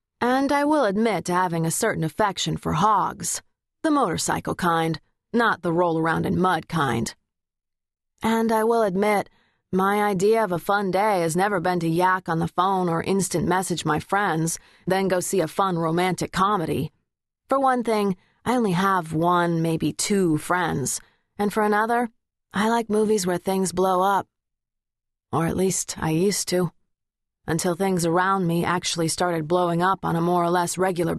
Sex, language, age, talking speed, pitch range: female, English, 30-49, 170 wpm, 175-210 Hz